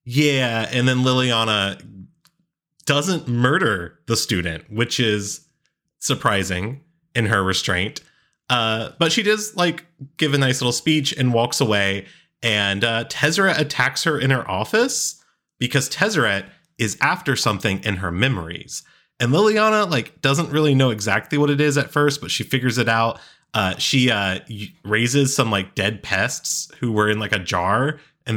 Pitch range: 100-140 Hz